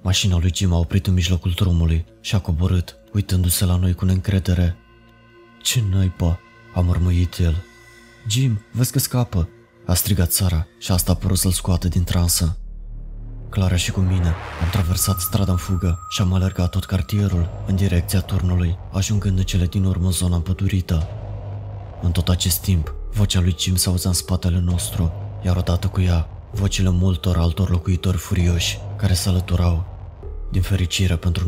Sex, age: male, 20-39